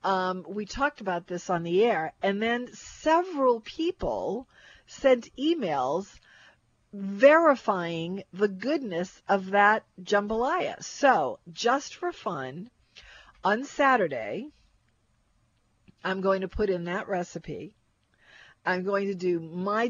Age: 50-69